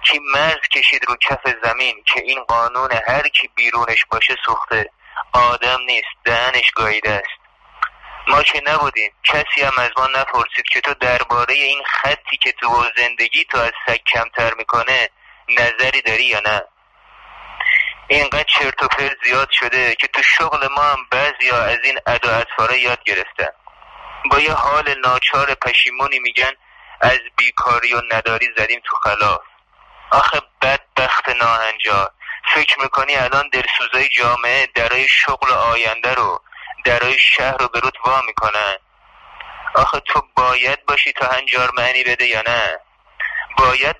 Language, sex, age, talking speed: Persian, male, 30-49, 140 wpm